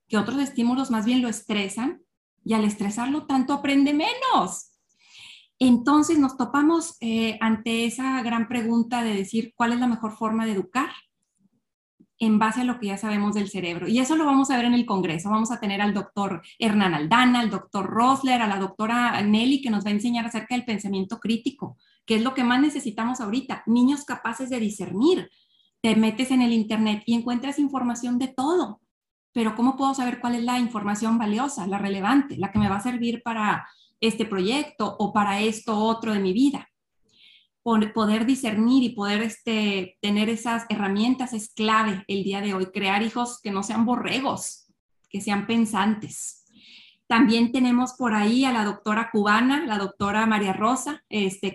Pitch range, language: 205-245 Hz, Spanish